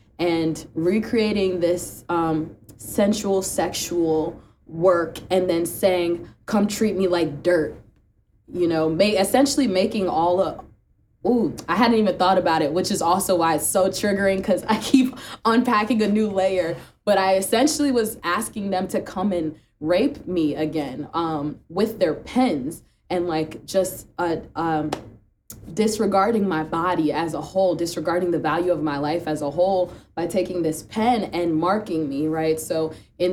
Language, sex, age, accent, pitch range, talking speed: English, female, 20-39, American, 165-205 Hz, 155 wpm